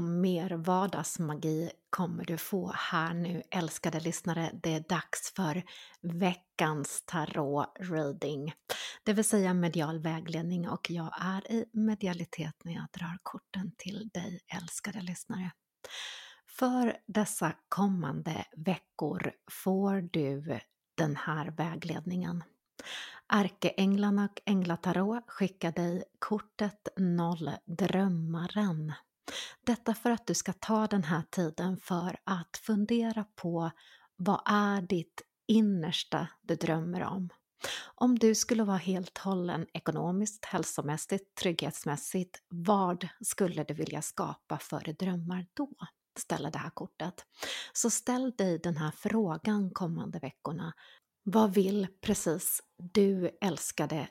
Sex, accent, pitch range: female, native, 165-200 Hz